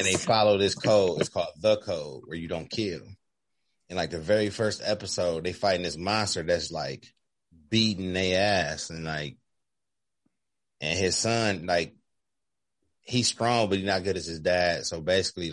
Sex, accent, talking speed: male, American, 175 wpm